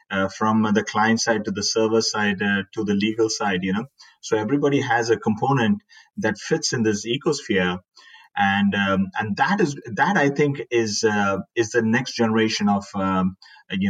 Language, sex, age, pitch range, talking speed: English, male, 30-49, 100-125 Hz, 185 wpm